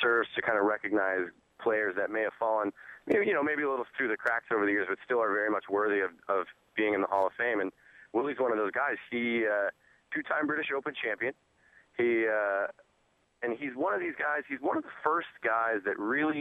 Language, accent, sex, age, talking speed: English, American, male, 30-49, 230 wpm